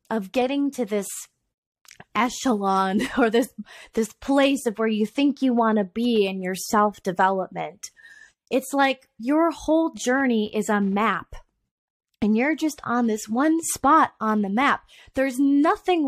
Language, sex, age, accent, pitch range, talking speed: English, female, 20-39, American, 210-310 Hz, 150 wpm